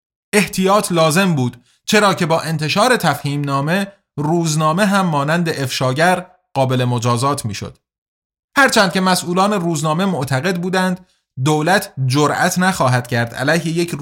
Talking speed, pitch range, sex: 120 wpm, 135-185 Hz, male